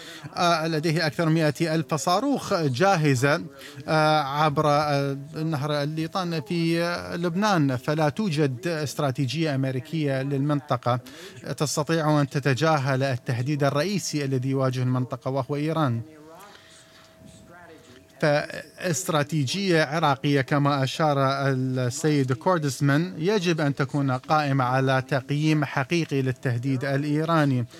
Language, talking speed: Arabic, 90 wpm